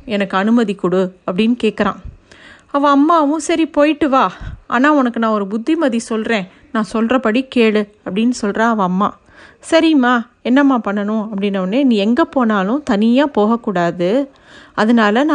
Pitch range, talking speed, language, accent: 210-270 Hz, 140 wpm, Tamil, native